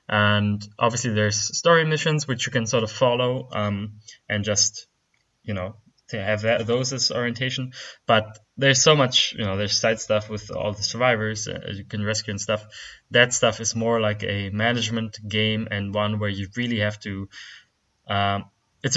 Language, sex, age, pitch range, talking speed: English, male, 20-39, 100-115 Hz, 185 wpm